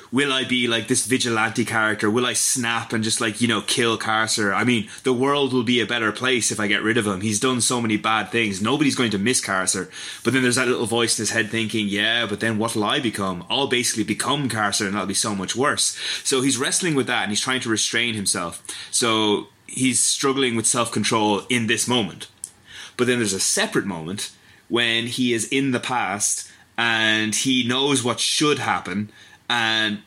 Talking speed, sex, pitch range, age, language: 220 wpm, male, 105-125 Hz, 20-39, English